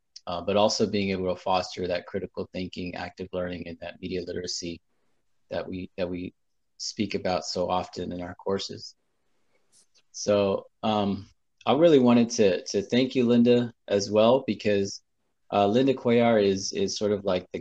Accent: American